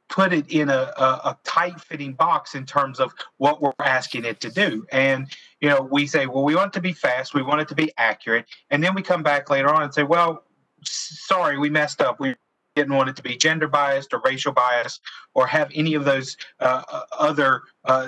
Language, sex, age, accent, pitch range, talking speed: English, male, 40-59, American, 135-165 Hz, 225 wpm